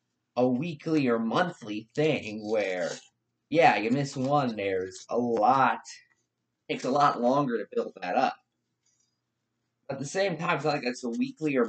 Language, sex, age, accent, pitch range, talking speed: English, male, 30-49, American, 120-170 Hz, 170 wpm